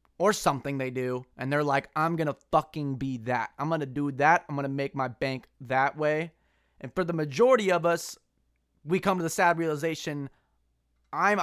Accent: American